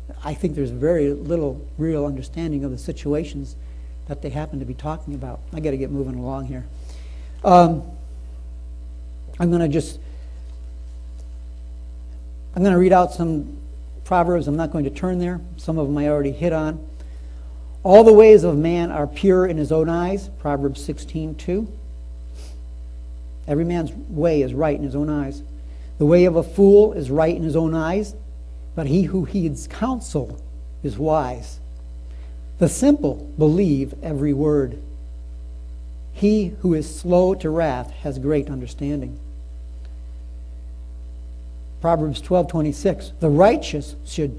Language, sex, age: English, male, 60-79